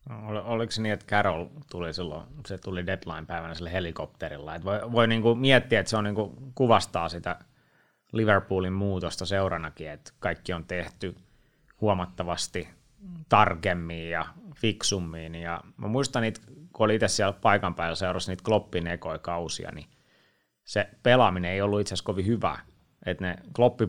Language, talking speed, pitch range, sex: Finnish, 155 wpm, 85-110 Hz, male